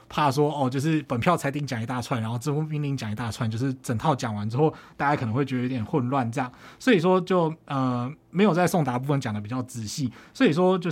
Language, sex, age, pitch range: Chinese, male, 20-39, 125-180 Hz